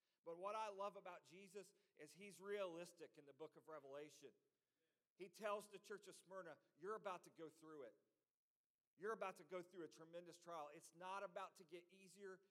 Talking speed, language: 190 wpm, English